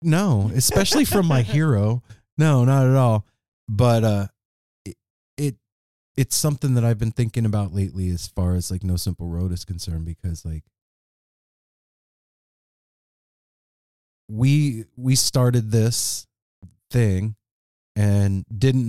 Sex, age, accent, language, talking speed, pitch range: male, 30-49, American, English, 125 wpm, 85-110 Hz